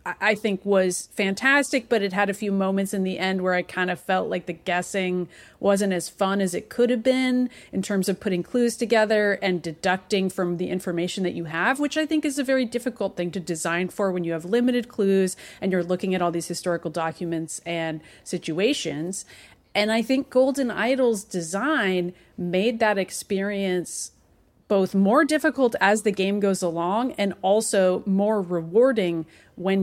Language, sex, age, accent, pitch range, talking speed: English, female, 30-49, American, 180-220 Hz, 185 wpm